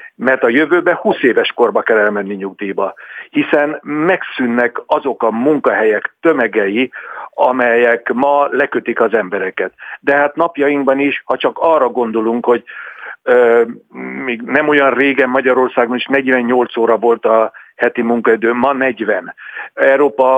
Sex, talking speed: male, 135 wpm